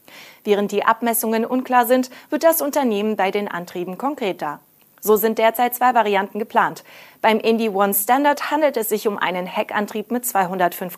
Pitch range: 195-255 Hz